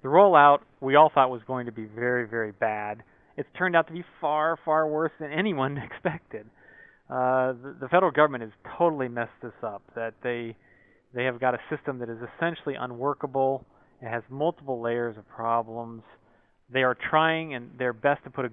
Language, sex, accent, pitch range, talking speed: English, male, American, 120-145 Hz, 190 wpm